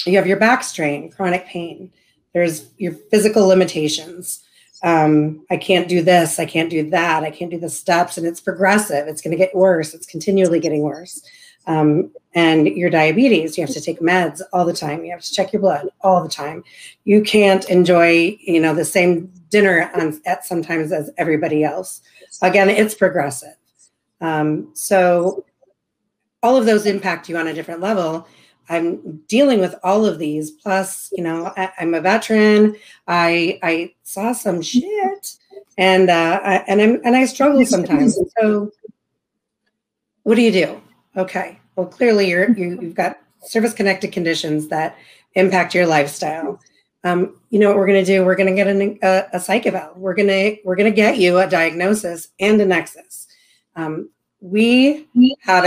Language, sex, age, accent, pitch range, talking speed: English, female, 40-59, American, 165-205 Hz, 170 wpm